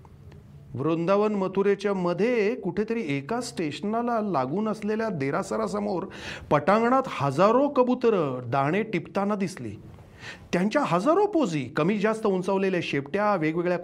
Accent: native